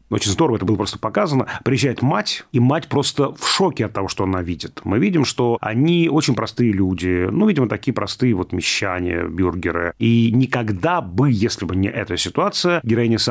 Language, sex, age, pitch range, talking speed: Russian, male, 30-49, 105-135 Hz, 185 wpm